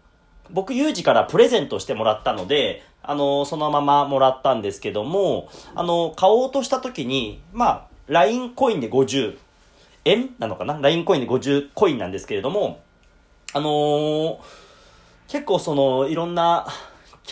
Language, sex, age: Japanese, male, 40-59